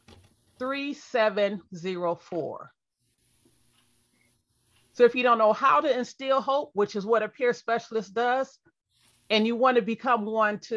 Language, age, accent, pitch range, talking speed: English, 40-59, American, 180-235 Hz, 135 wpm